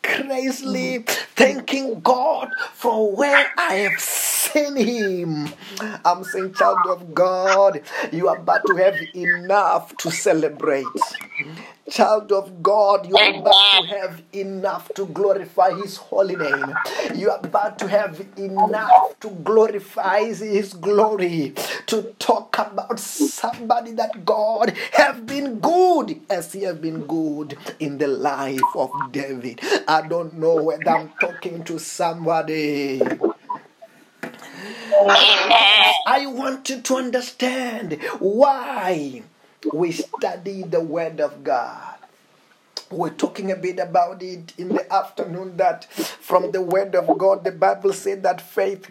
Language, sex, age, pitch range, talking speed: English, male, 30-49, 180-230 Hz, 130 wpm